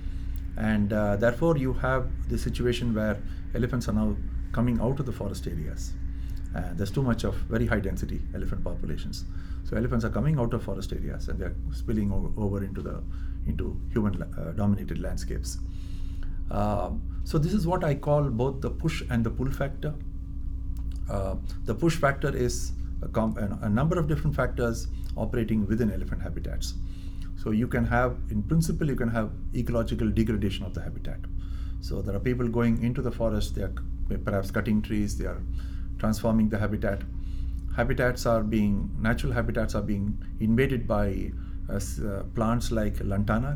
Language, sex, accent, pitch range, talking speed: English, male, Indian, 90-115 Hz, 170 wpm